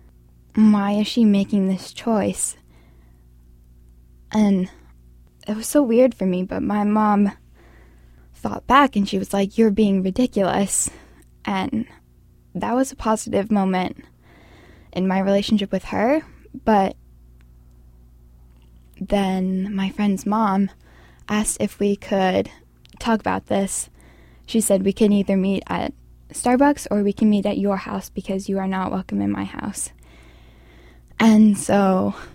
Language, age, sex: English, 10-29, female